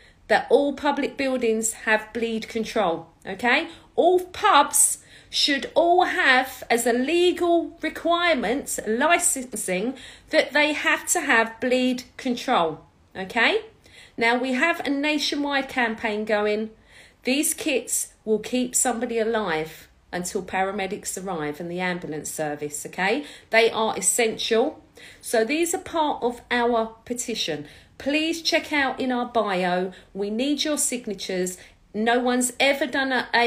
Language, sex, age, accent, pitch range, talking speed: English, female, 40-59, British, 215-275 Hz, 130 wpm